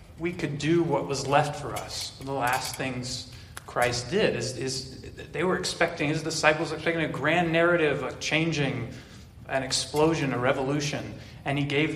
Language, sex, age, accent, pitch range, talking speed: English, male, 30-49, American, 115-140 Hz, 170 wpm